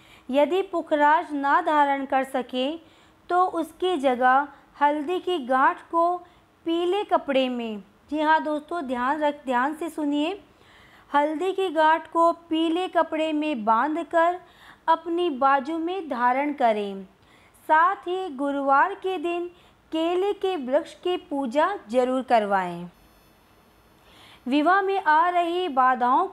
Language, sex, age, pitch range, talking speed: Hindi, female, 20-39, 275-345 Hz, 125 wpm